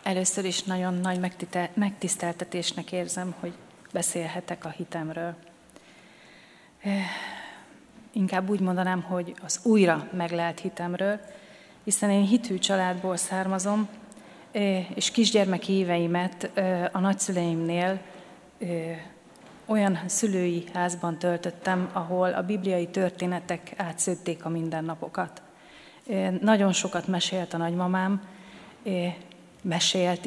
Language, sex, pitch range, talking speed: Hungarian, female, 170-190 Hz, 90 wpm